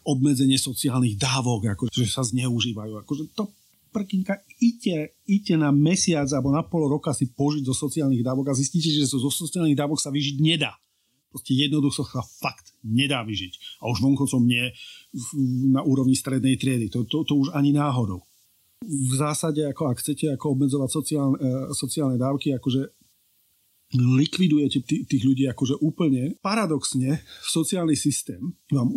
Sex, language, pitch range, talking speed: male, Slovak, 125-155 Hz, 145 wpm